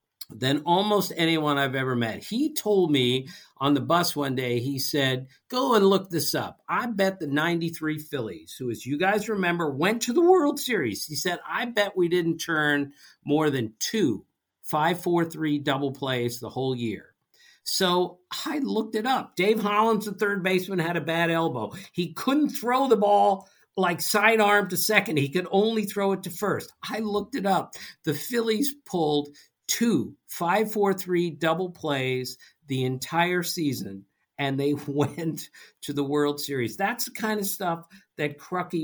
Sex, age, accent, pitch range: male, 50-69, American, 145-195 Hz